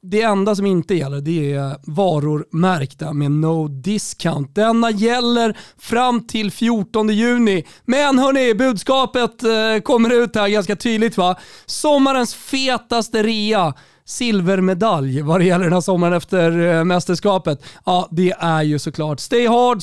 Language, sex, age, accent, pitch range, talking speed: Swedish, male, 30-49, native, 155-215 Hz, 140 wpm